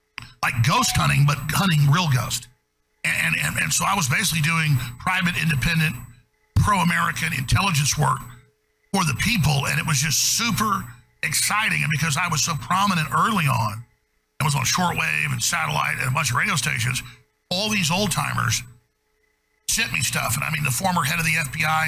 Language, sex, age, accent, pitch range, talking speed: English, male, 50-69, American, 130-160 Hz, 180 wpm